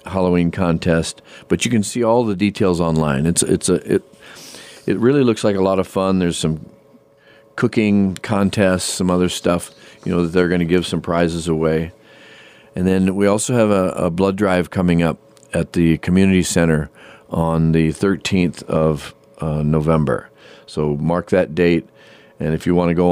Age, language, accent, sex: 40-59, English, American, male